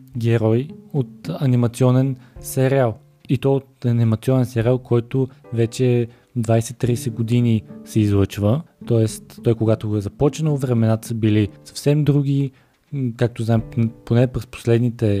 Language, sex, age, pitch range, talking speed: Bulgarian, male, 20-39, 110-130 Hz, 120 wpm